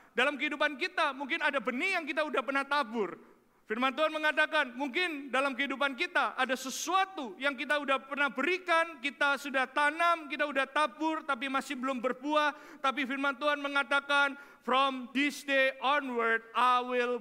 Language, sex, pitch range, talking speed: Indonesian, male, 200-285 Hz, 155 wpm